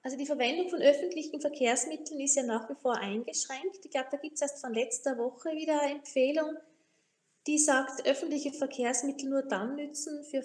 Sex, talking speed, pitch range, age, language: female, 185 wpm, 240-295 Hz, 20-39, German